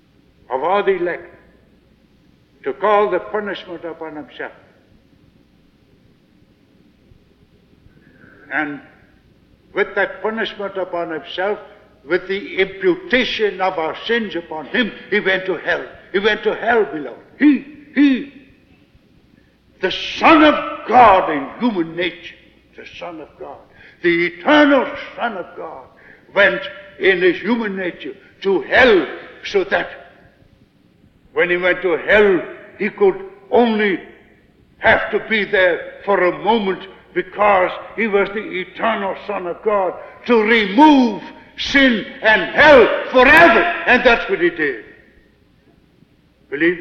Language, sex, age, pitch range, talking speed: English, male, 60-79, 180-255 Hz, 120 wpm